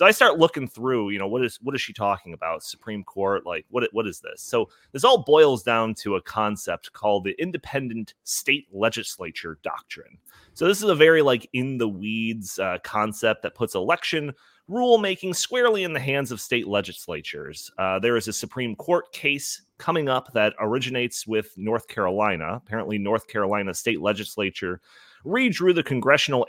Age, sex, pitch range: 30-49, male, 105-150 Hz